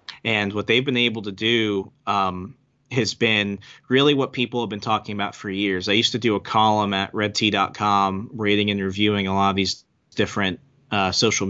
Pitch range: 105-125 Hz